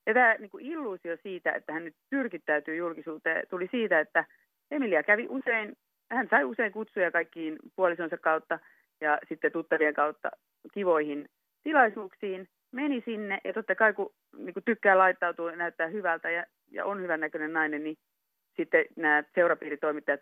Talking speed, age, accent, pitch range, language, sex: 155 wpm, 30-49, native, 155-210 Hz, Finnish, female